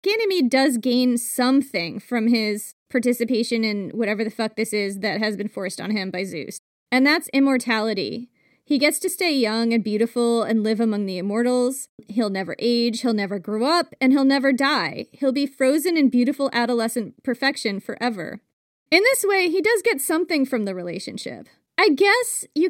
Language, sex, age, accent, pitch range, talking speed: English, female, 20-39, American, 225-275 Hz, 180 wpm